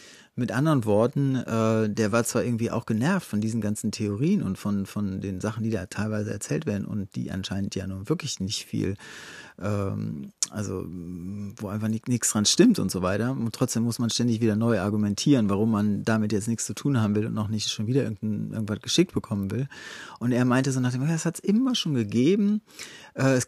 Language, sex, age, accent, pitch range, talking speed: German, male, 40-59, German, 105-135 Hz, 205 wpm